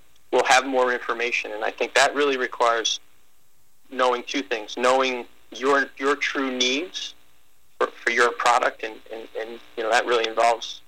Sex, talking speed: male, 165 wpm